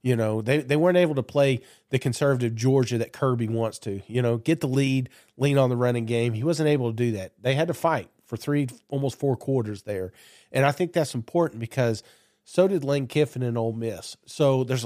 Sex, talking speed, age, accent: male, 225 wpm, 40-59, American